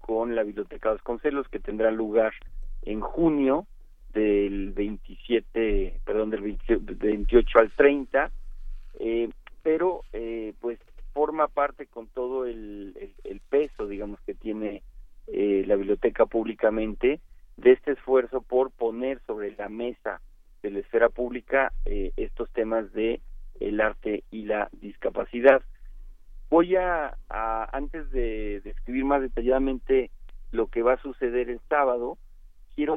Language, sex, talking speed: Spanish, male, 135 wpm